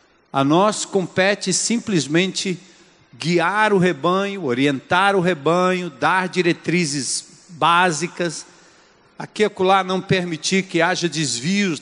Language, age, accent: Portuguese, 50-69, Brazilian